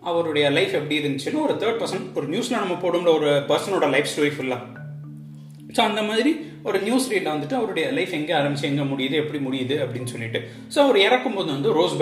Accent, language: native, Tamil